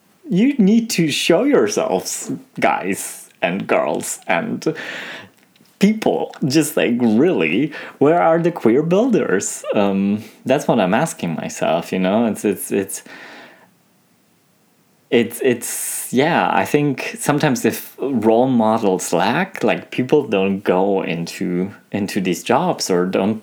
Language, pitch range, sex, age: English, 95-130 Hz, male, 30-49